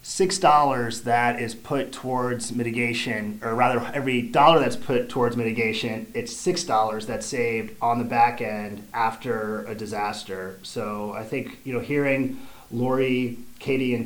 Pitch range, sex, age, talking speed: 115-130 Hz, male, 30-49, 155 wpm